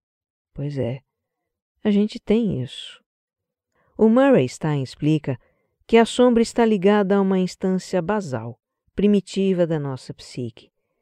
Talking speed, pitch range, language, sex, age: 125 wpm, 140-205 Hz, Portuguese, female, 50-69